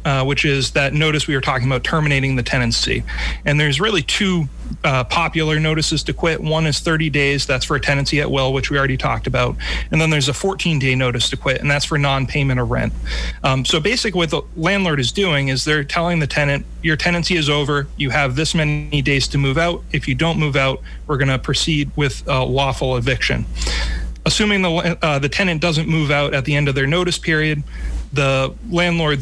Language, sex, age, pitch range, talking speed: English, male, 30-49, 130-160 Hz, 215 wpm